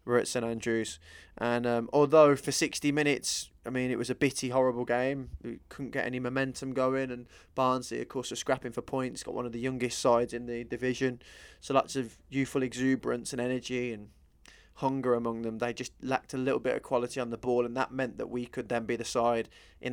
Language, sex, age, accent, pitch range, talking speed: English, male, 20-39, British, 120-135 Hz, 225 wpm